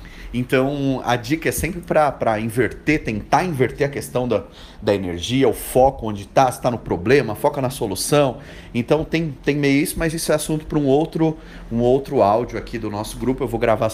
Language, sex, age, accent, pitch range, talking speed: Portuguese, male, 30-49, Brazilian, 110-165 Hz, 200 wpm